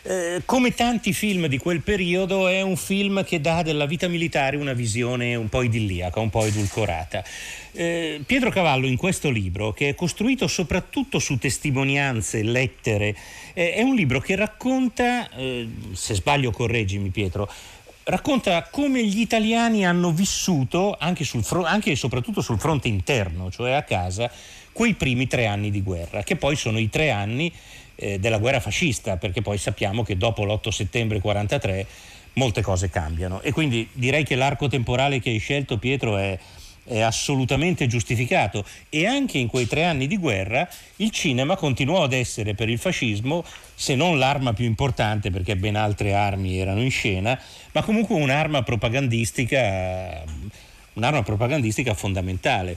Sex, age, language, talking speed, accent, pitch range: male, 40-59, Italian, 155 wpm, native, 105-170 Hz